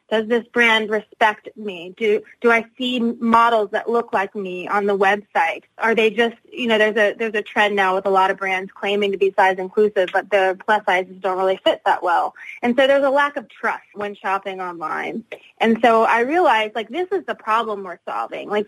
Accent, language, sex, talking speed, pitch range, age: American, English, female, 220 wpm, 195-230 Hz, 20-39